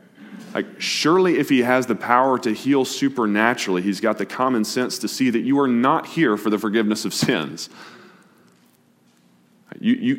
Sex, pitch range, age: male, 95-125 Hz, 30-49